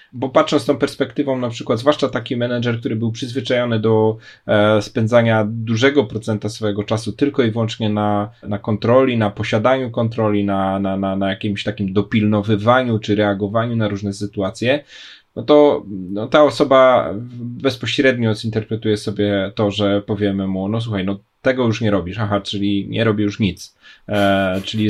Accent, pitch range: native, 105-125 Hz